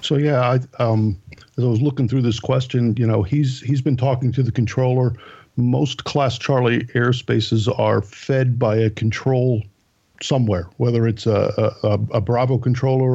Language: English